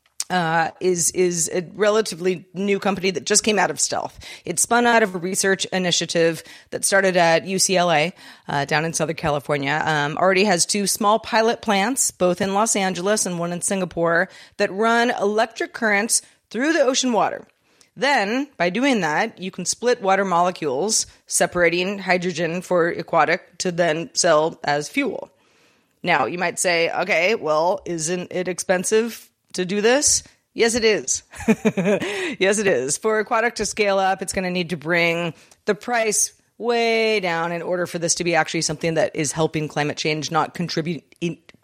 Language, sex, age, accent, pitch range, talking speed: English, female, 30-49, American, 170-215 Hz, 170 wpm